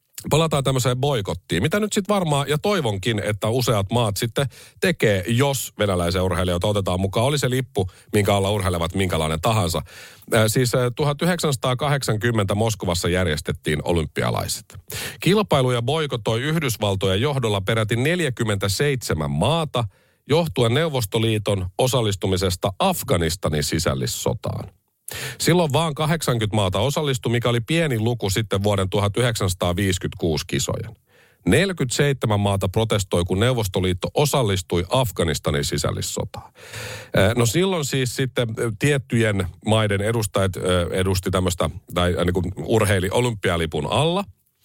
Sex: male